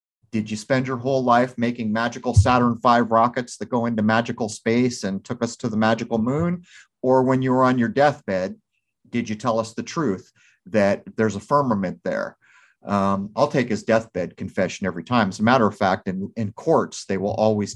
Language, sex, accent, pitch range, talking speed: English, male, American, 105-130 Hz, 205 wpm